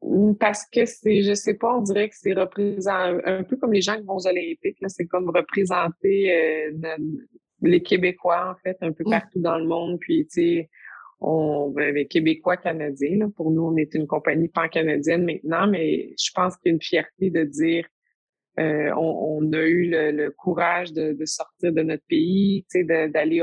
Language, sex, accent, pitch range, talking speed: French, female, Canadian, 155-180 Hz, 195 wpm